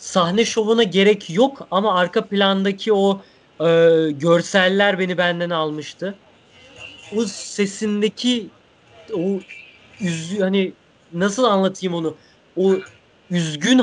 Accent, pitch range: native, 180-230 Hz